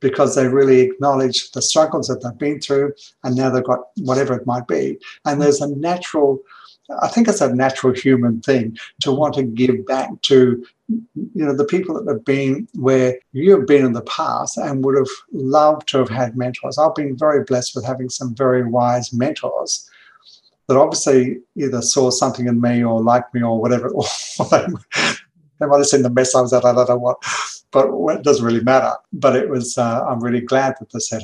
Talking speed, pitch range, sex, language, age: 205 wpm, 125-145 Hz, male, English, 60-79